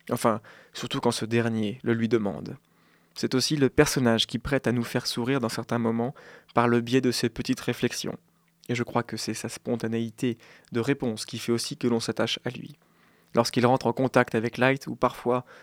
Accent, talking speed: French, 205 wpm